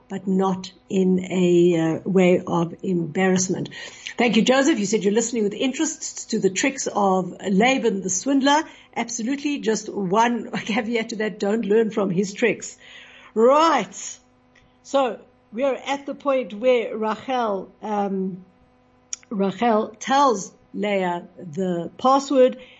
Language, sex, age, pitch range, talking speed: English, female, 60-79, 190-240 Hz, 130 wpm